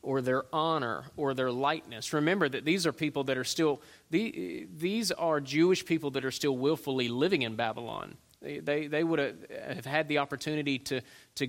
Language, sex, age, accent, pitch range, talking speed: English, male, 30-49, American, 125-150 Hz, 180 wpm